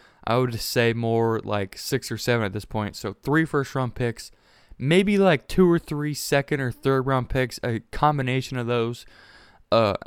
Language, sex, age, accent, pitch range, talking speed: English, male, 20-39, American, 115-135 Hz, 185 wpm